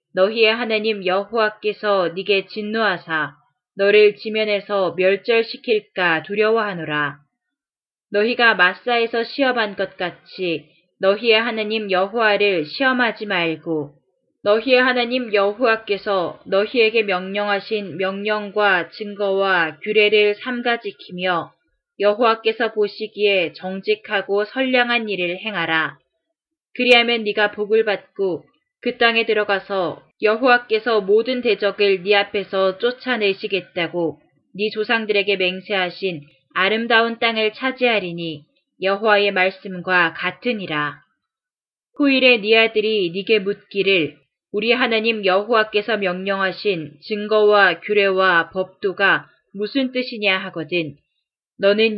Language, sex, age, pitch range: Korean, female, 20-39, 185-225 Hz